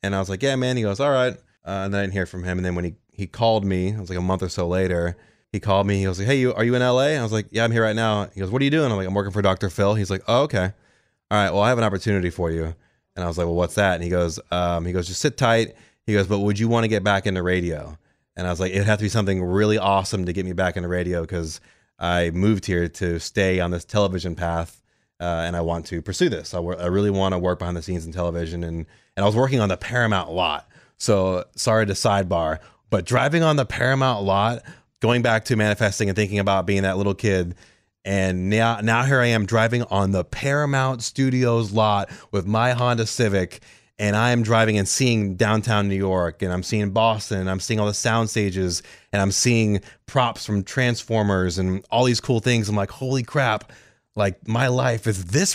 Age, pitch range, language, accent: 20-39, 95-115 Hz, English, American